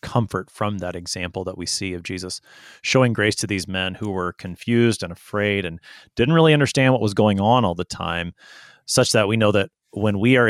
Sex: male